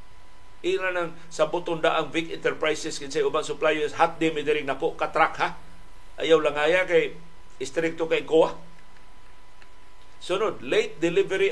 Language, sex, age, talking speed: Filipino, male, 50-69, 130 wpm